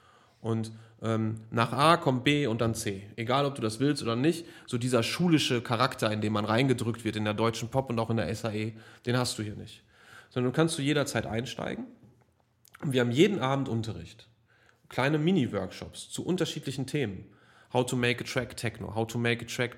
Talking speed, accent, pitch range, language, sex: 205 wpm, German, 115-140 Hz, German, male